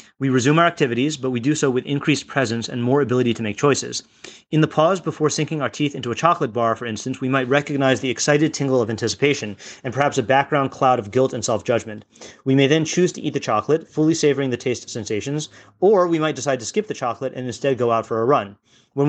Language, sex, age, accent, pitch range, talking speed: English, male, 30-49, American, 120-145 Hz, 240 wpm